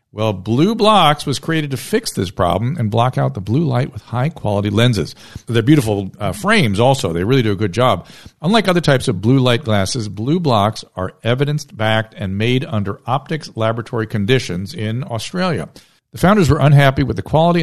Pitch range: 105-150 Hz